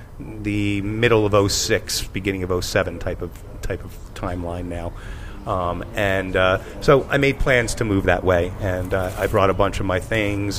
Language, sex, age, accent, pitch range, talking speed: English, male, 30-49, American, 90-105 Hz, 185 wpm